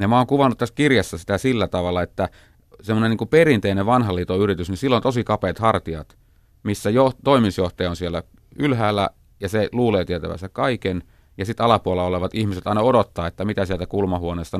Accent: native